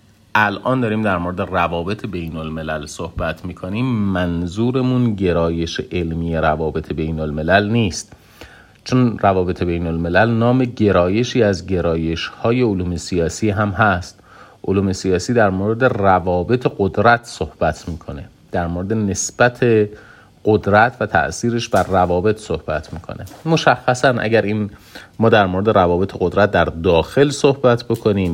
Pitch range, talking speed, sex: 85-115 Hz, 125 wpm, male